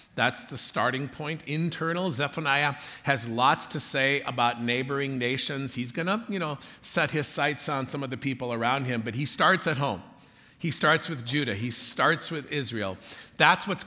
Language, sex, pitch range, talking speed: English, male, 115-145 Hz, 180 wpm